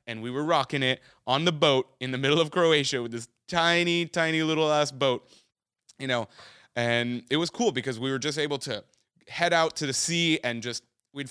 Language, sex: English, male